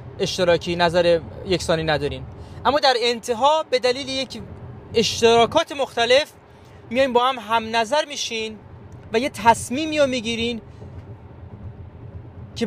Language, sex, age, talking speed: Persian, male, 30-49, 115 wpm